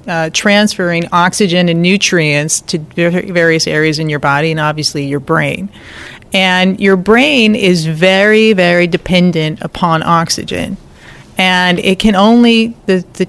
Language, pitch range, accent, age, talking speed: English, 170-200 Hz, American, 40-59, 135 wpm